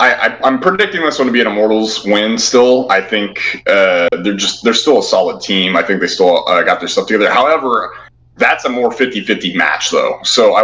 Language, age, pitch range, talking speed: English, 20-39, 95-120 Hz, 225 wpm